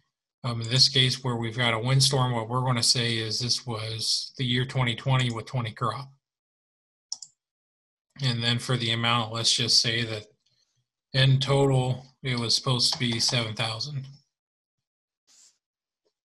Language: English